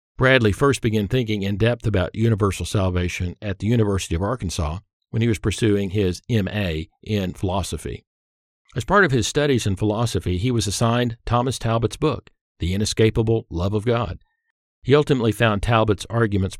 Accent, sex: American, male